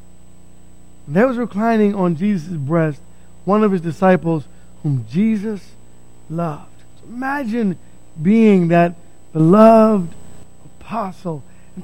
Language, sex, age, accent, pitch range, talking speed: English, male, 50-69, American, 180-230 Hz, 100 wpm